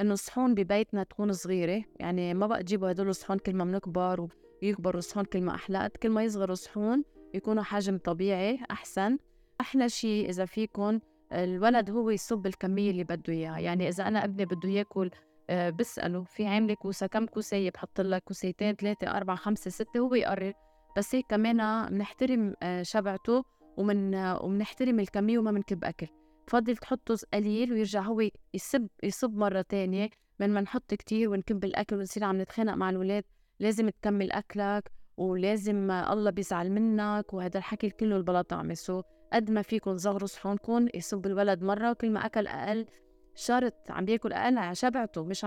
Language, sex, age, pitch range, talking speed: Arabic, female, 20-39, 190-220 Hz, 160 wpm